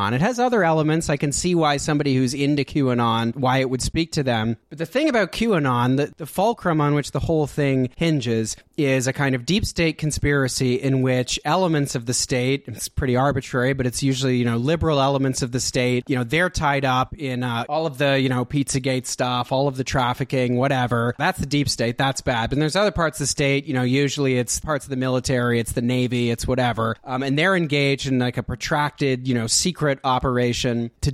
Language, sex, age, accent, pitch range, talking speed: English, male, 30-49, American, 125-145 Hz, 225 wpm